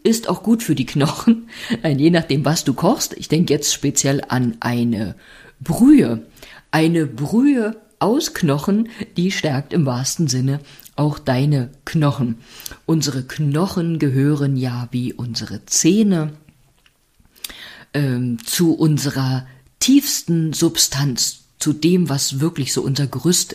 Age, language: 50-69, German